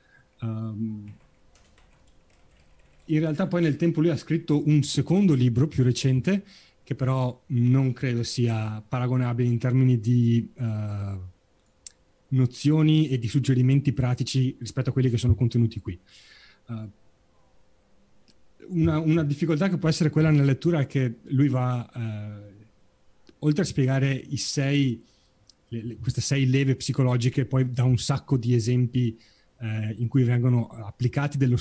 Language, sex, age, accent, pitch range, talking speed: Italian, male, 30-49, native, 115-140 Hz, 125 wpm